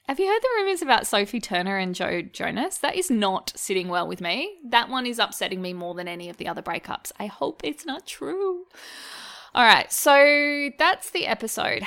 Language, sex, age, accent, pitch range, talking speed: English, female, 20-39, Australian, 195-270 Hz, 205 wpm